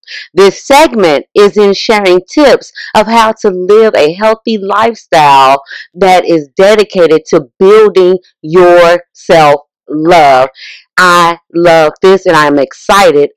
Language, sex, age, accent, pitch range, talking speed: English, female, 40-59, American, 180-280 Hz, 120 wpm